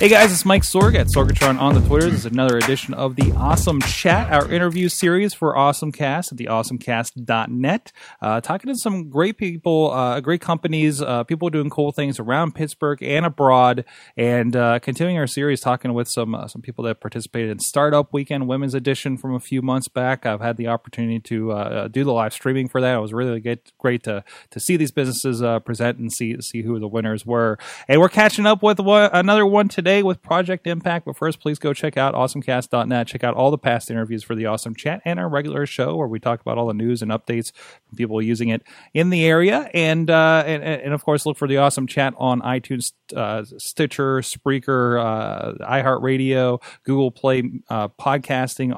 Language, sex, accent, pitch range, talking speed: English, male, American, 115-150 Hz, 205 wpm